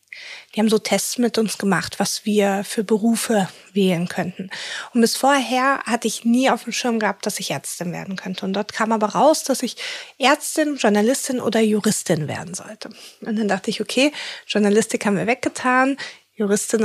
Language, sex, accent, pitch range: German, female, German, 205-245 Hz